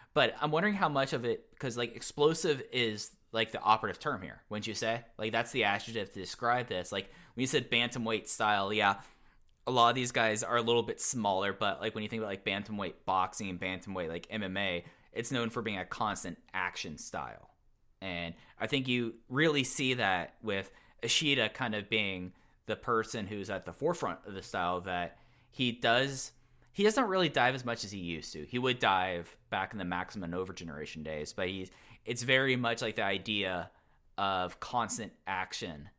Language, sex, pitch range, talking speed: English, male, 95-120 Hz, 195 wpm